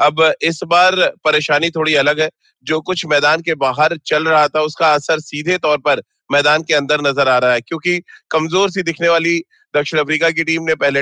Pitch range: 145-170 Hz